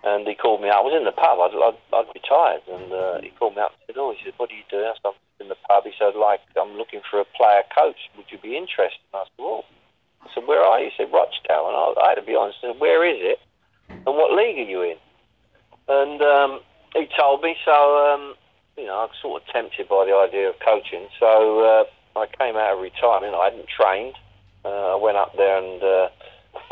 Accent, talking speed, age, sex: British, 260 wpm, 40-59, male